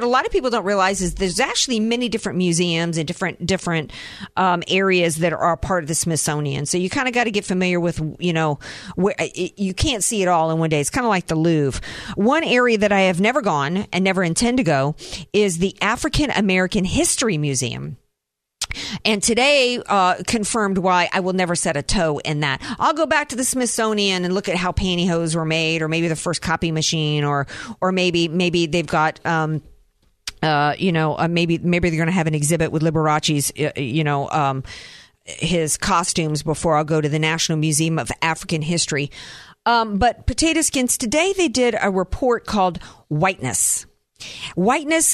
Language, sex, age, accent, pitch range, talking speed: English, female, 50-69, American, 155-205 Hz, 200 wpm